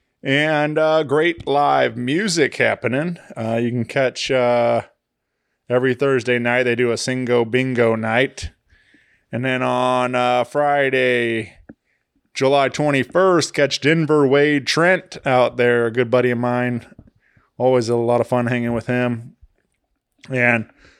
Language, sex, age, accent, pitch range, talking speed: English, male, 20-39, American, 120-145 Hz, 135 wpm